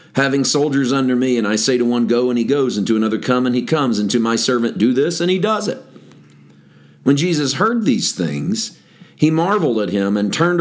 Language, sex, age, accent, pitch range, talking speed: English, male, 40-59, American, 115-160 Hz, 230 wpm